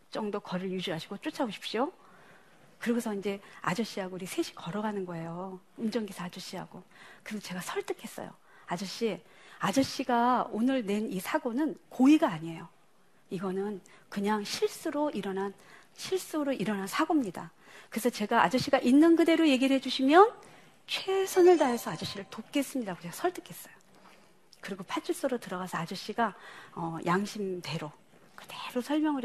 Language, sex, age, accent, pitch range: Korean, female, 40-59, native, 195-280 Hz